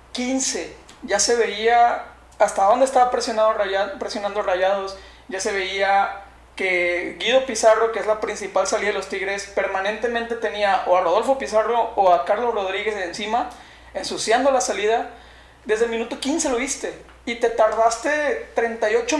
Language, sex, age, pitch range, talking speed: Spanish, male, 30-49, 215-255 Hz, 155 wpm